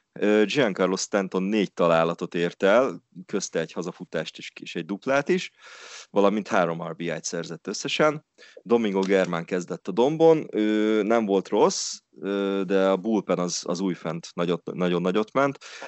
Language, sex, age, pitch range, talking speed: Hungarian, male, 30-49, 90-105 Hz, 140 wpm